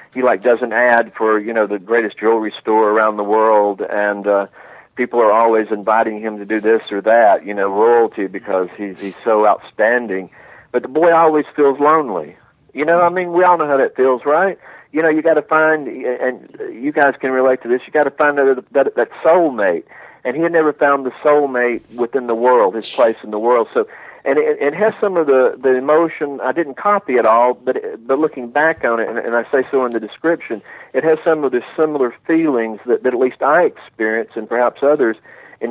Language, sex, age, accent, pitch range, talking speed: English, male, 50-69, American, 110-150 Hz, 225 wpm